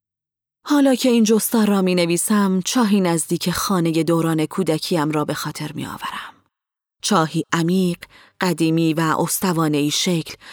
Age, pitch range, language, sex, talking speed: 30-49, 165-210 Hz, Persian, female, 130 wpm